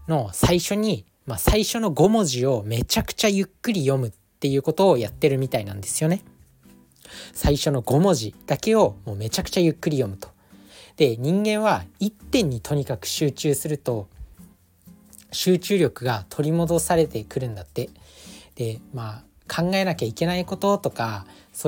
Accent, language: native, Japanese